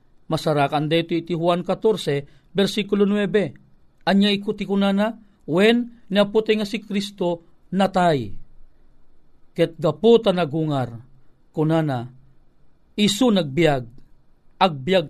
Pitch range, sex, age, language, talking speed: 155-215 Hz, male, 40-59, Filipino, 90 wpm